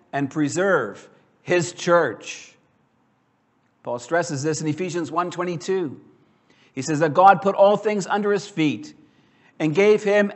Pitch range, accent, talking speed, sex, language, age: 155-195 Hz, American, 135 wpm, male, English, 50-69